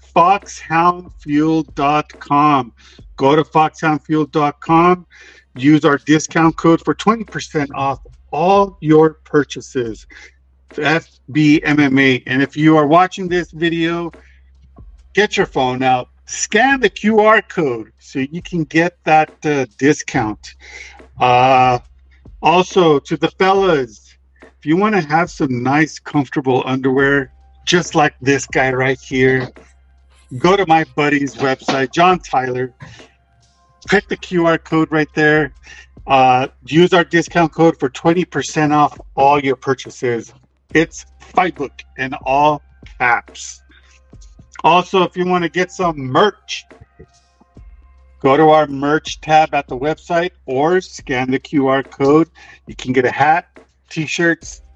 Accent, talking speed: American, 125 wpm